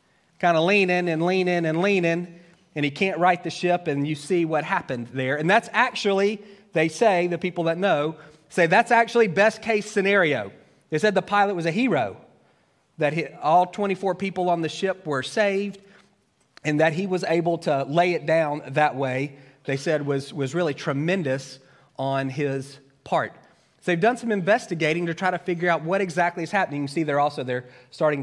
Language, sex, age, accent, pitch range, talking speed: English, male, 30-49, American, 140-185 Hz, 195 wpm